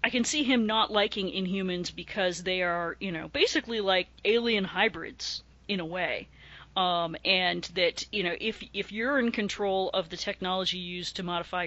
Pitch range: 180-225 Hz